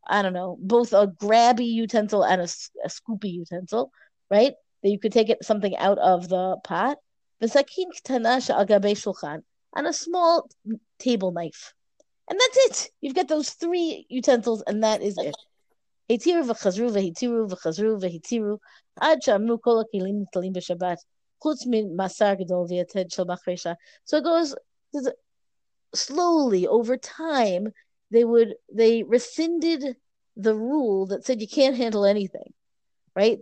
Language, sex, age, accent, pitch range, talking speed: English, female, 30-49, American, 195-260 Hz, 105 wpm